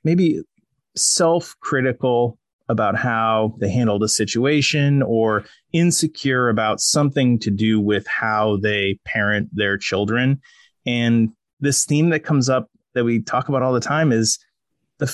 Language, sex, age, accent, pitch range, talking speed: English, male, 30-49, American, 110-140 Hz, 140 wpm